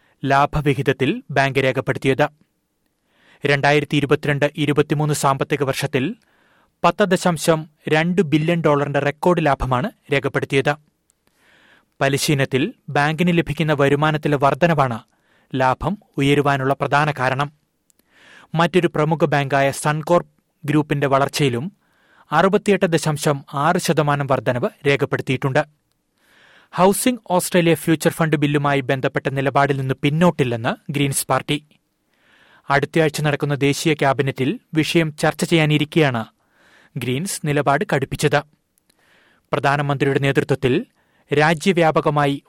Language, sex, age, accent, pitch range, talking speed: Malayalam, male, 30-49, native, 140-160 Hz, 80 wpm